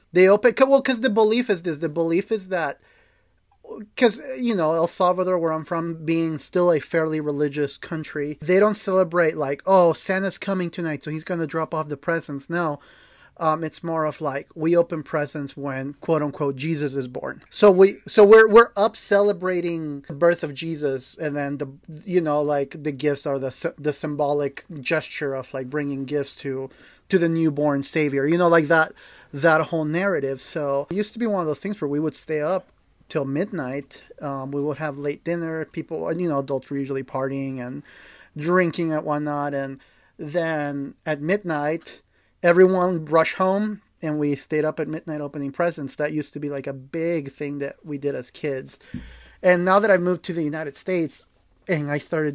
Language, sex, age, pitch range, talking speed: English, male, 30-49, 145-175 Hz, 195 wpm